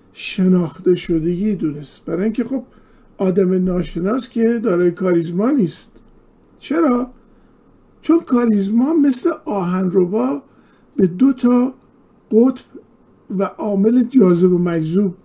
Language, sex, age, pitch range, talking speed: Persian, male, 50-69, 180-240 Hz, 105 wpm